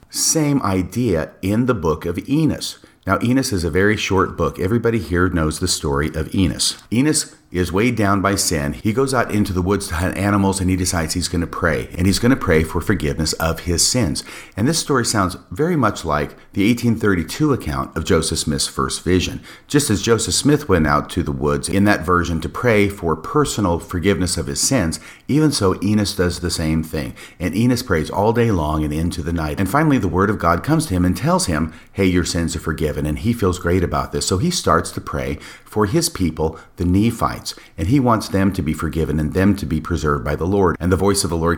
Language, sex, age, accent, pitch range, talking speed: English, male, 40-59, American, 80-105 Hz, 230 wpm